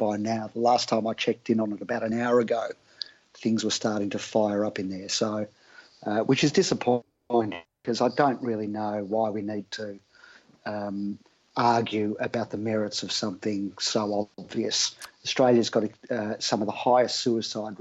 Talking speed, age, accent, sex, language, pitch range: 180 wpm, 50-69, Australian, male, English, 105-120 Hz